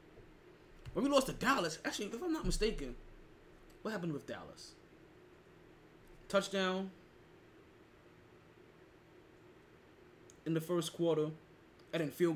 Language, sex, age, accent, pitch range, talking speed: English, male, 20-39, American, 140-175 Hz, 105 wpm